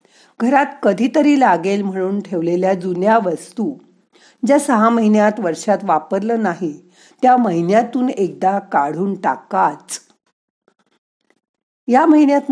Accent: native